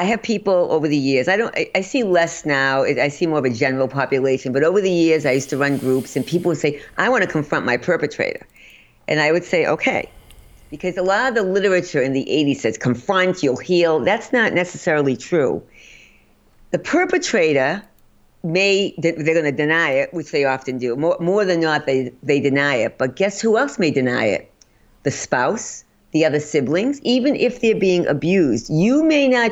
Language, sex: English, female